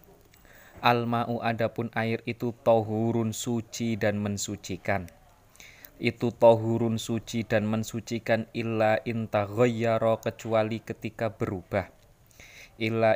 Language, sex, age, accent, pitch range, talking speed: Indonesian, male, 20-39, native, 105-115 Hz, 85 wpm